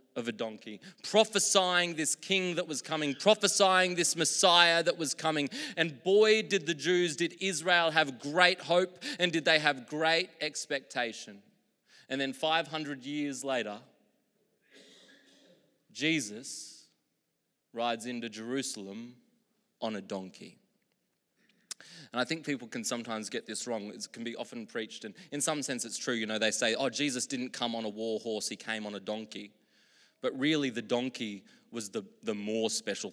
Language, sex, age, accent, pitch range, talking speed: English, male, 20-39, Australian, 105-155 Hz, 160 wpm